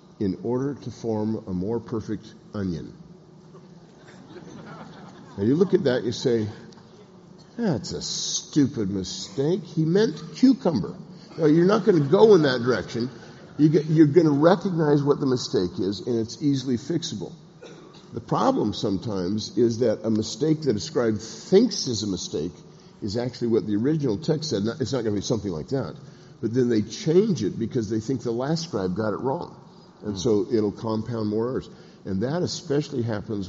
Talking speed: 170 wpm